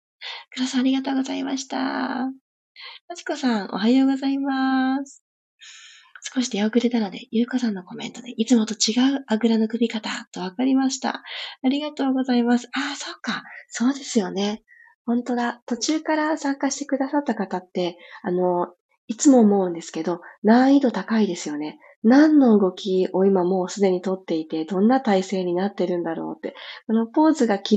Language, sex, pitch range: Japanese, female, 190-270 Hz